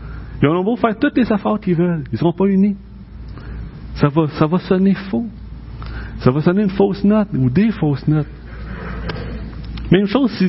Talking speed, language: 190 wpm, French